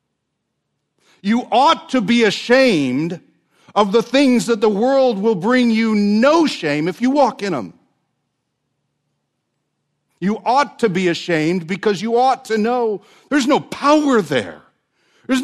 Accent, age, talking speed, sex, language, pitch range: American, 50-69, 140 wpm, male, English, 145-225 Hz